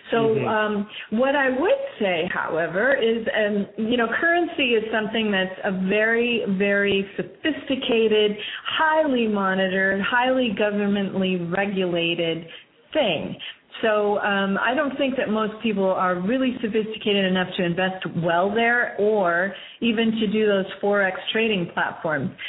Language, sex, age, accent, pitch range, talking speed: English, female, 40-59, American, 185-220 Hz, 130 wpm